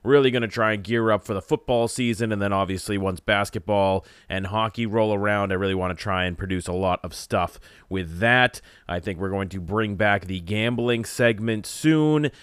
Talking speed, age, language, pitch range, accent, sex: 210 wpm, 30-49, English, 95-120 Hz, American, male